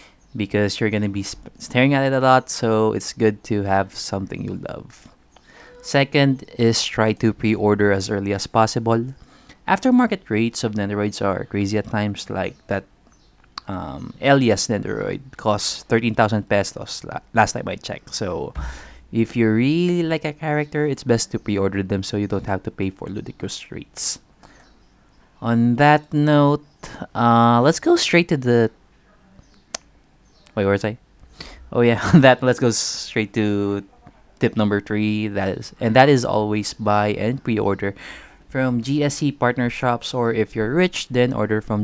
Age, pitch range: 20-39, 100-130 Hz